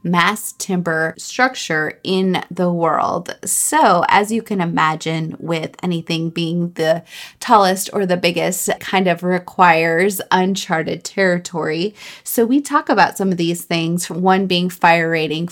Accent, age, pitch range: American, 20-39, 165-185 Hz